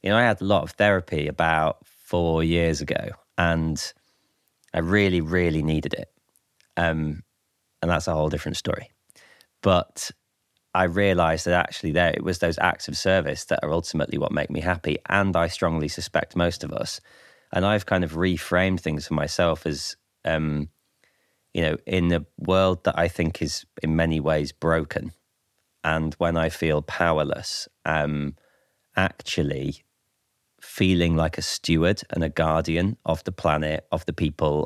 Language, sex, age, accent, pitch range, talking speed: English, male, 20-39, British, 80-90 Hz, 165 wpm